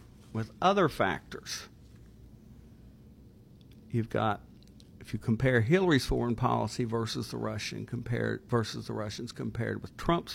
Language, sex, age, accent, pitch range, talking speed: English, male, 60-79, American, 110-135 Hz, 120 wpm